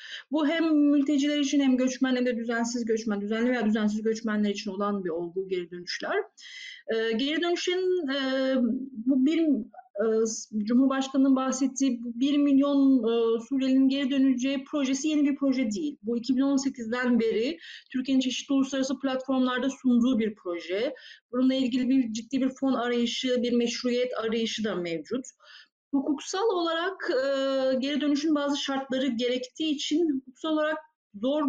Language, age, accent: Turkish, 30-49, native